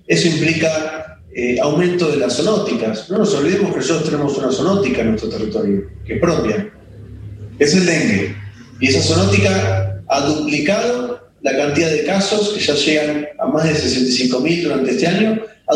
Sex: male